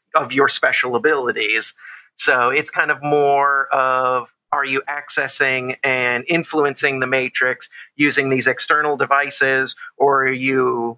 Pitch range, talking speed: 125-140 Hz, 130 wpm